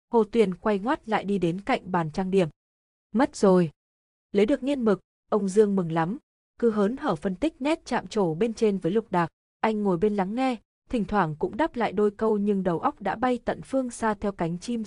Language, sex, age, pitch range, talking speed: Vietnamese, female, 20-39, 180-225 Hz, 230 wpm